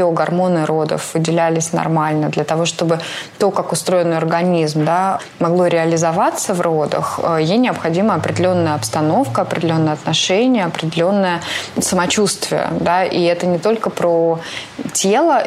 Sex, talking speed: female, 120 wpm